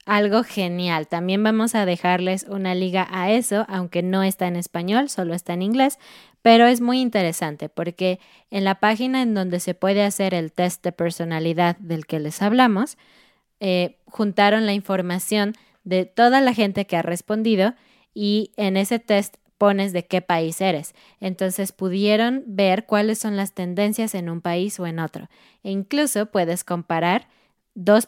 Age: 20-39